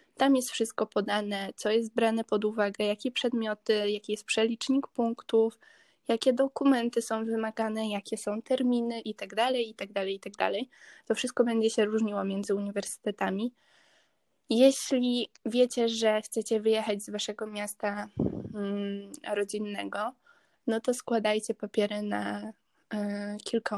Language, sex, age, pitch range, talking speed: Polish, female, 10-29, 205-235 Hz, 120 wpm